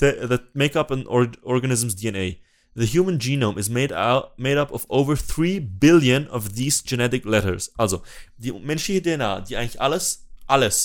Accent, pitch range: German, 105-130 Hz